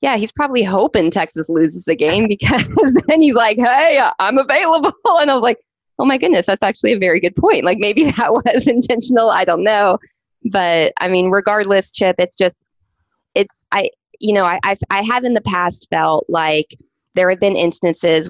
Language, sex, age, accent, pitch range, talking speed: English, female, 20-39, American, 170-215 Hz, 195 wpm